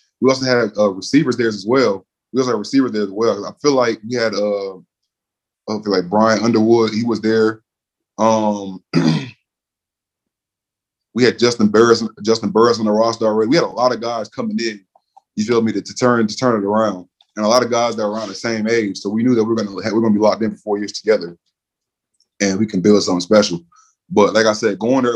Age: 20-39